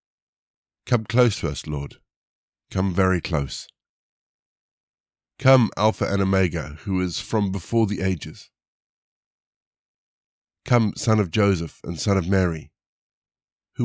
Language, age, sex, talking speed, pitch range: English, 50-69, male, 115 wpm, 85-105 Hz